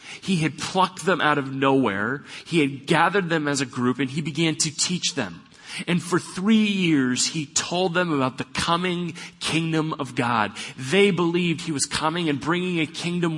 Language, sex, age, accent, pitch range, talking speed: English, male, 30-49, American, 115-160 Hz, 190 wpm